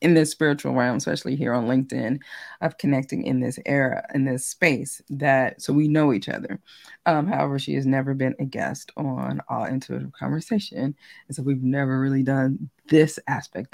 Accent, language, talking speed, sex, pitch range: American, English, 185 wpm, female, 135-170 Hz